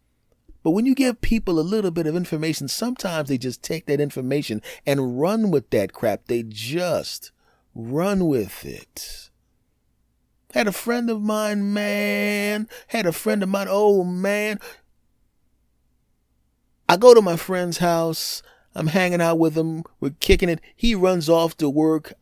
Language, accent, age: English, American, 30-49